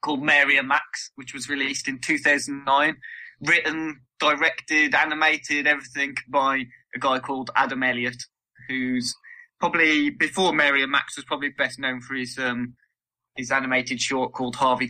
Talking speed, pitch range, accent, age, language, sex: 155 wpm, 125-150 Hz, British, 20-39, English, male